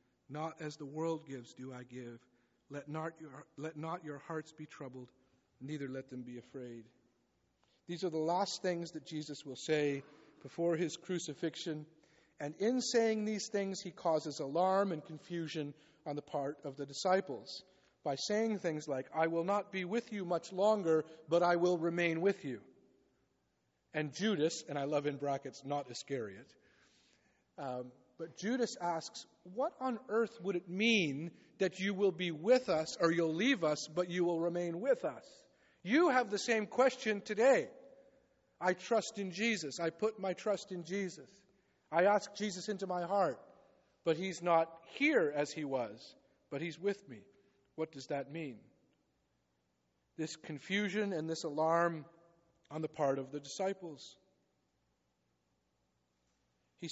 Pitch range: 140-195 Hz